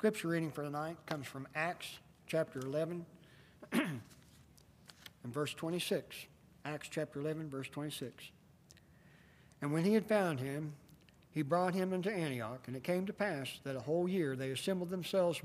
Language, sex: English, male